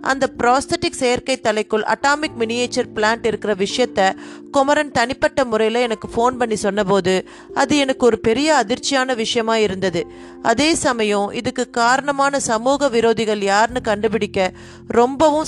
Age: 30-49